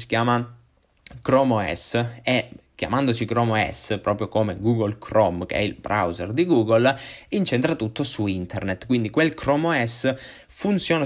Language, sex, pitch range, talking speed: Italian, male, 105-125 Hz, 145 wpm